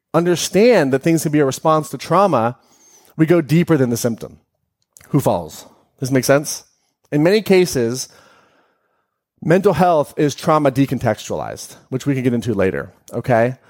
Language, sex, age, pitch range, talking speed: English, male, 30-49, 125-170 Hz, 160 wpm